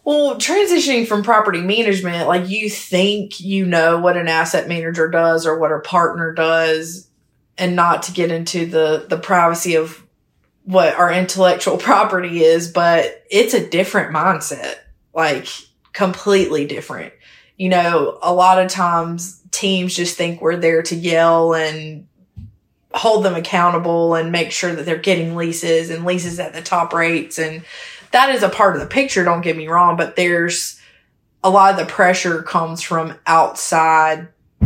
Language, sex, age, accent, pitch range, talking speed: English, female, 20-39, American, 160-180 Hz, 165 wpm